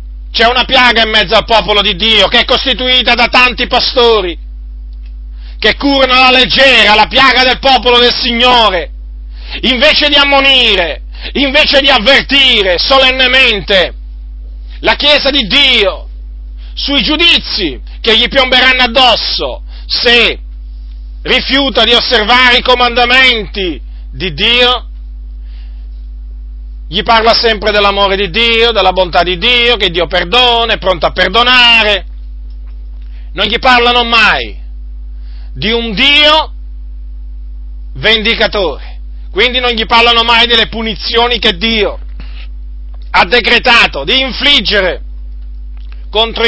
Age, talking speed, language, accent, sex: 40-59, 115 wpm, Italian, native, male